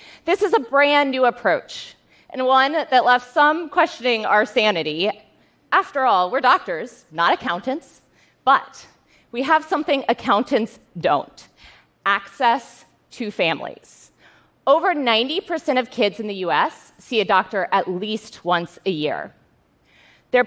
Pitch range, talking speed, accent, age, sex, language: 195-285 Hz, 130 wpm, American, 30-49, female, Russian